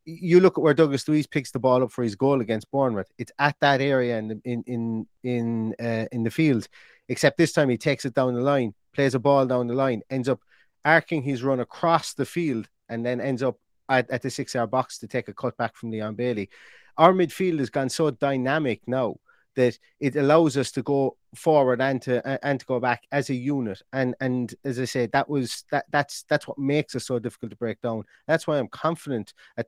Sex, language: male, English